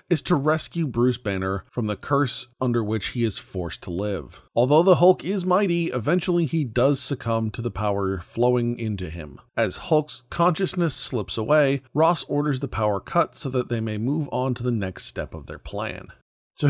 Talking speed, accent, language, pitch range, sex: 195 wpm, American, English, 105-145 Hz, male